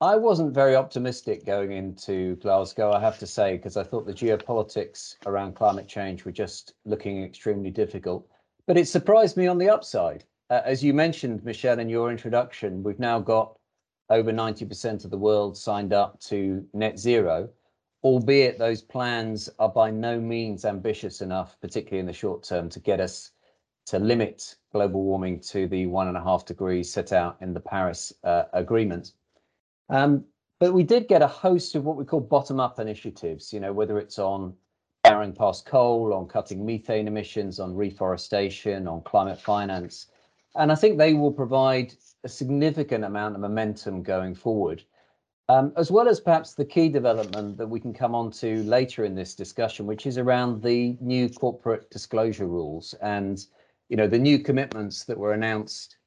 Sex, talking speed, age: male, 180 wpm, 40-59